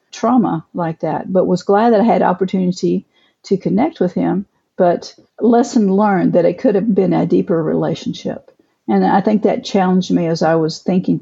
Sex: female